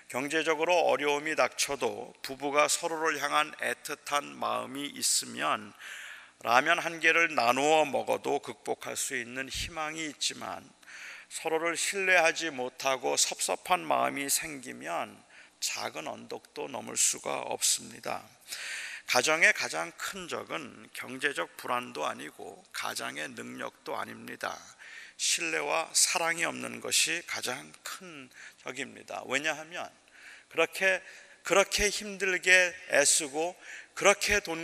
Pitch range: 145-185 Hz